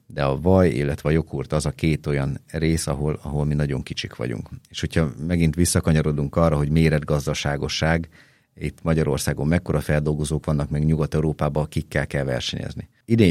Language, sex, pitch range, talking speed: Hungarian, male, 70-85 Hz, 155 wpm